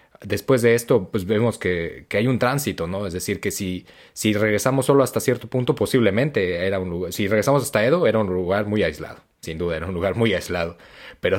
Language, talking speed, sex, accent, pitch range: Spanish, 220 wpm, male, Mexican, 95-115 Hz